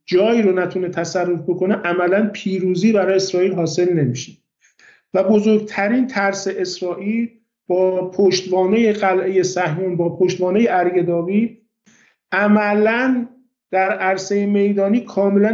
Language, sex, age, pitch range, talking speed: Persian, male, 50-69, 180-215 Hz, 105 wpm